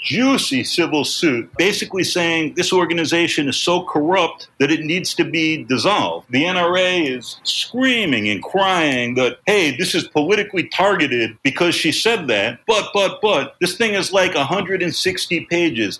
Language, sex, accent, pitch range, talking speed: English, male, American, 150-190 Hz, 155 wpm